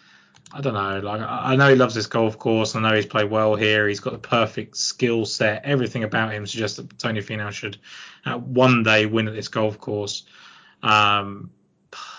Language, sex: English, male